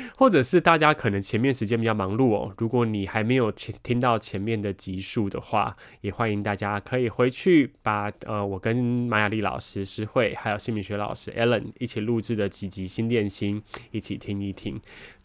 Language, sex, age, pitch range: Chinese, male, 20-39, 100-120 Hz